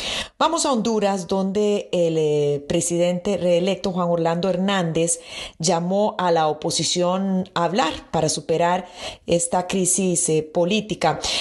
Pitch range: 170-215 Hz